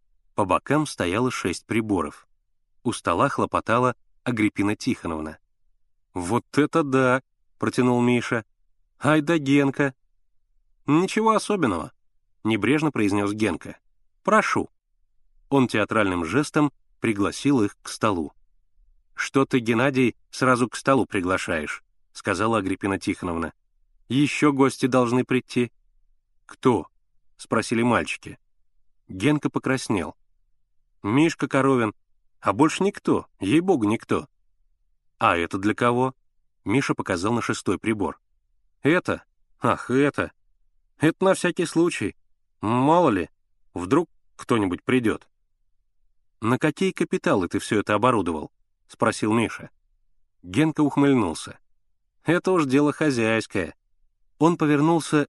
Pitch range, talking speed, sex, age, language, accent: 100-140 Hz, 105 wpm, male, 30-49, Russian, native